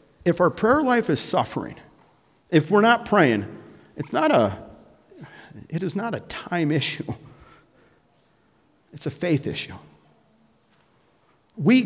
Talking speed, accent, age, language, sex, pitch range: 120 wpm, American, 50-69, English, male, 120-165 Hz